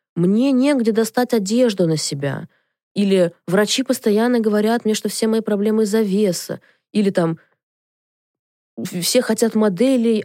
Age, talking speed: 20-39, 130 wpm